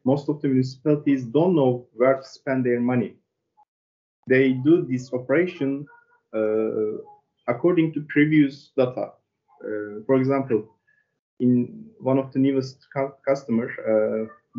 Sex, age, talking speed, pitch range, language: male, 20-39, 125 wpm, 120-155 Hz, English